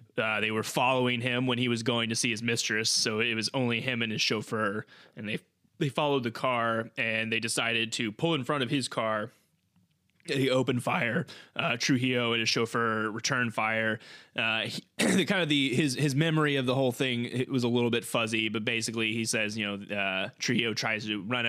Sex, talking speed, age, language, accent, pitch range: male, 215 wpm, 20-39, English, American, 105-130 Hz